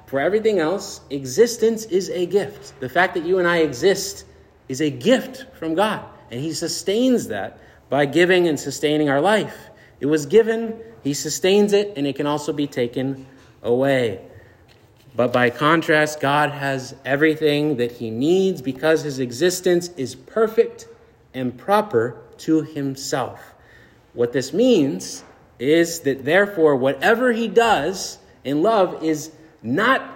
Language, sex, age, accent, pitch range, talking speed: English, male, 30-49, American, 135-180 Hz, 145 wpm